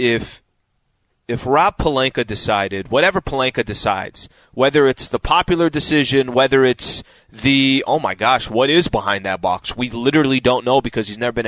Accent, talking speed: American, 165 wpm